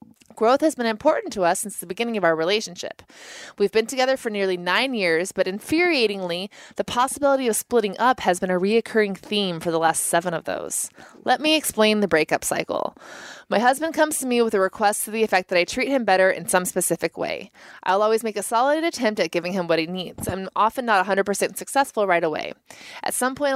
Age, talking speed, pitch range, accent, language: 20-39, 215 wpm, 185-245 Hz, American, English